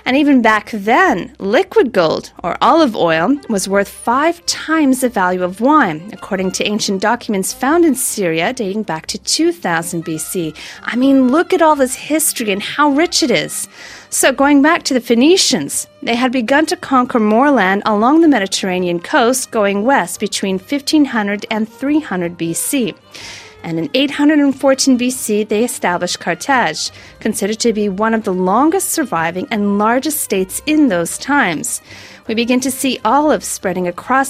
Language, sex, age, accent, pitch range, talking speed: English, female, 40-59, American, 195-275 Hz, 165 wpm